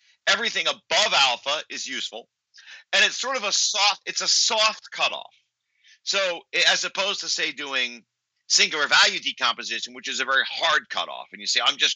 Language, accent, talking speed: English, American, 175 wpm